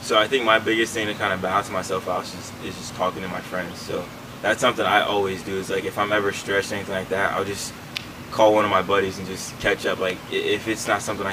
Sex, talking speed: male, 270 wpm